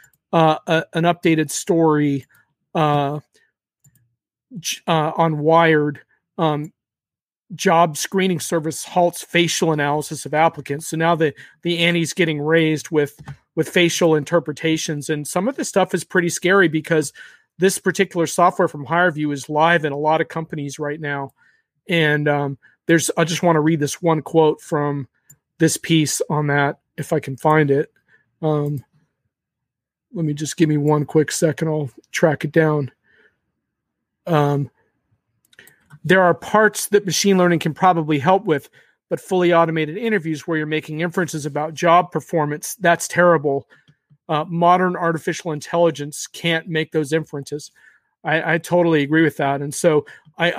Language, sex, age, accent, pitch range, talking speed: English, male, 40-59, American, 150-170 Hz, 150 wpm